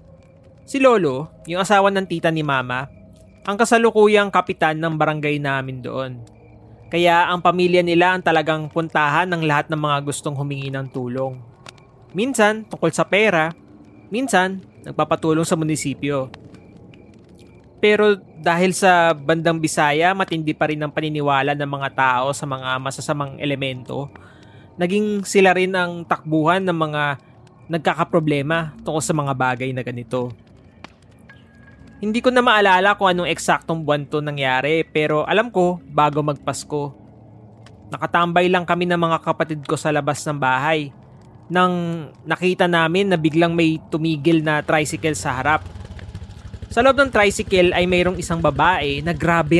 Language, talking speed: Filipino, 140 wpm